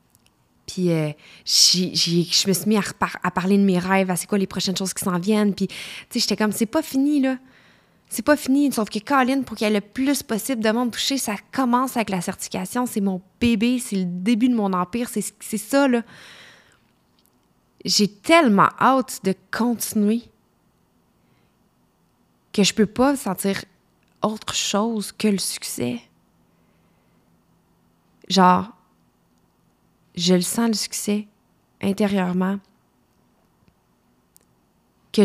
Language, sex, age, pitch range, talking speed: French, female, 20-39, 175-220 Hz, 140 wpm